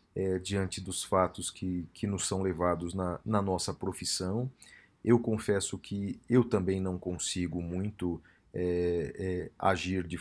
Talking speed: 130 wpm